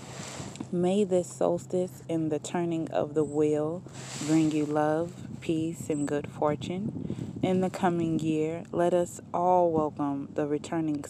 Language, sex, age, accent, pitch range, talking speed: English, female, 20-39, American, 145-170 Hz, 140 wpm